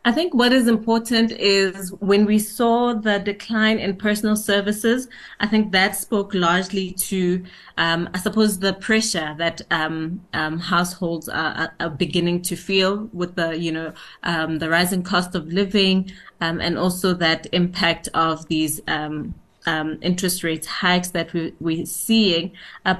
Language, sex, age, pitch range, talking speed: English, female, 20-39, 170-200 Hz, 160 wpm